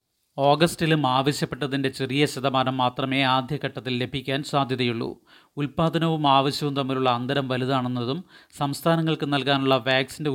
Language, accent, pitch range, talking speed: Malayalam, native, 130-145 Hz, 95 wpm